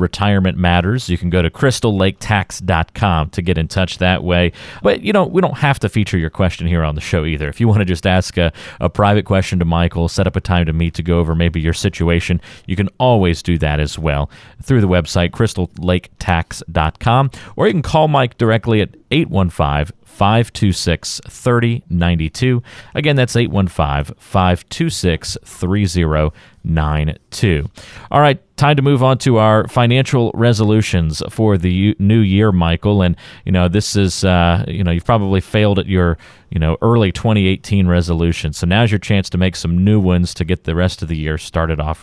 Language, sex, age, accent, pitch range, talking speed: English, male, 40-59, American, 85-115 Hz, 185 wpm